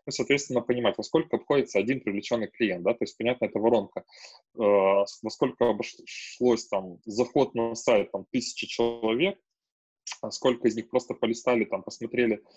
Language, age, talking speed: Russian, 20-39, 160 wpm